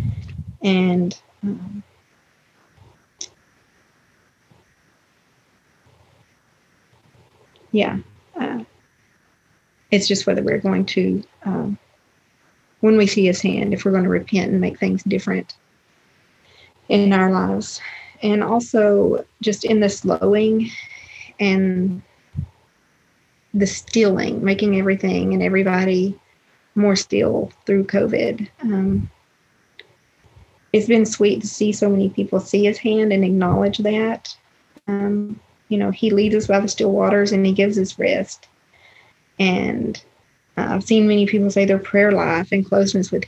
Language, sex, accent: English, female, American